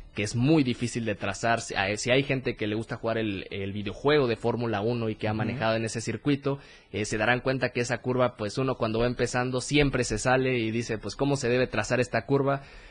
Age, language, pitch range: 20-39, Spanish, 105-125 Hz